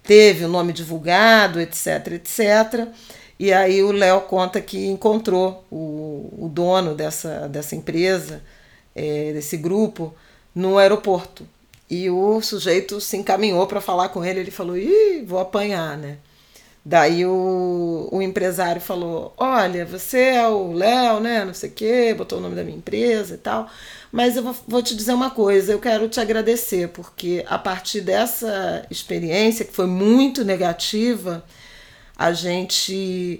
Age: 40-59